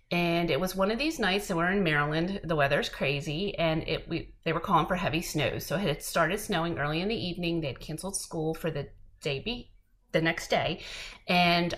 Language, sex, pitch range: English, female, 155-205 Hz